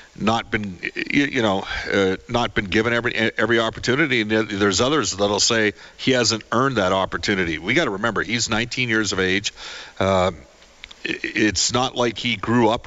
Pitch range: 95-115 Hz